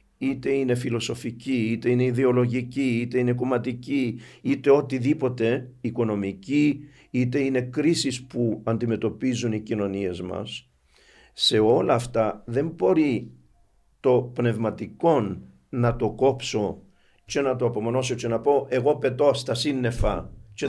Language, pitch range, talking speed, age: Greek, 105-135 Hz, 120 wpm, 50-69